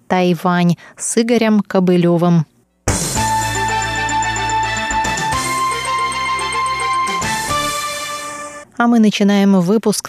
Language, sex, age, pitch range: Russian, female, 20-39, 185-245 Hz